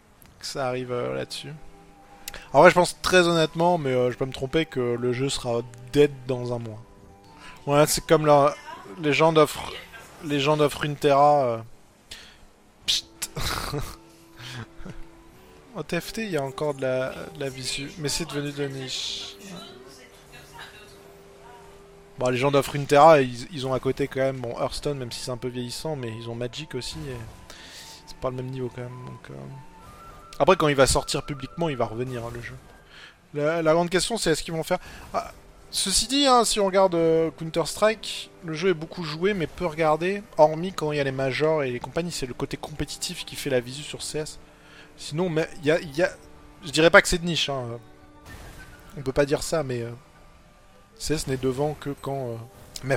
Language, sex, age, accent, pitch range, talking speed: French, male, 20-39, French, 125-160 Hz, 205 wpm